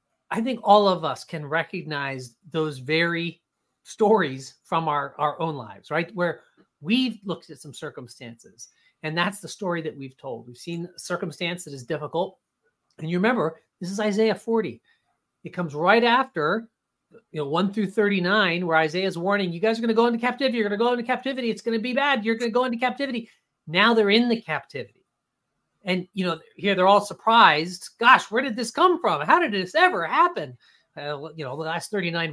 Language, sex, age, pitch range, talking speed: English, male, 40-59, 155-220 Hz, 205 wpm